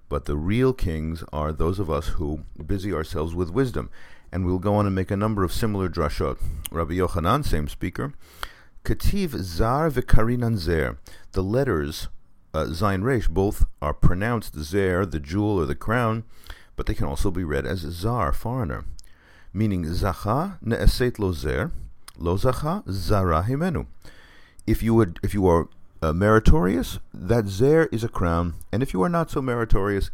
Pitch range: 80-105 Hz